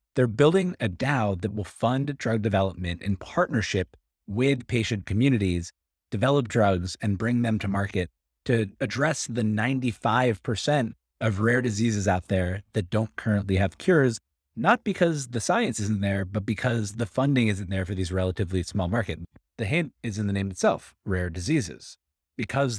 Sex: male